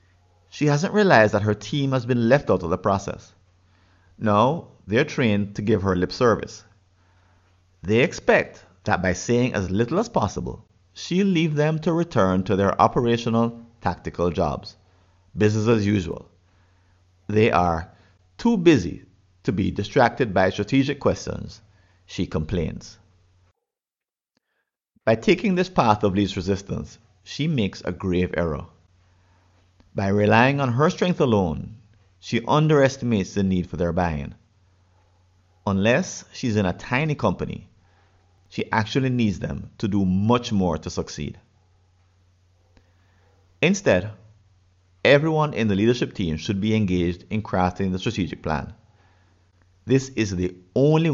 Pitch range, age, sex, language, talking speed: 90-115 Hz, 50-69, male, English, 135 wpm